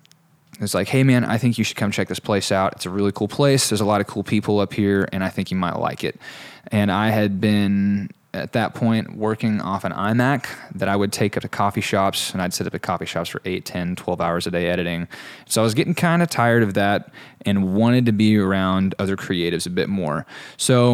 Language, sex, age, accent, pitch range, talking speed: English, male, 20-39, American, 100-115 Hz, 250 wpm